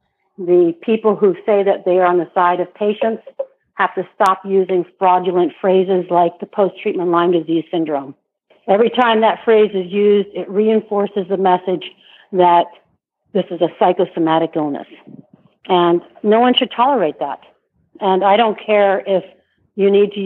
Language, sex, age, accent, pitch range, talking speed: English, female, 50-69, American, 175-205 Hz, 160 wpm